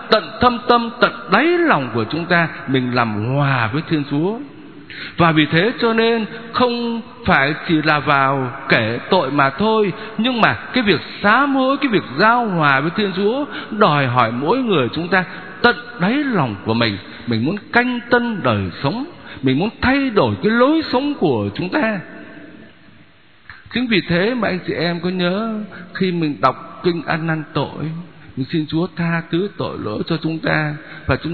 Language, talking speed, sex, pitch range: Vietnamese, 185 wpm, male, 150-230 Hz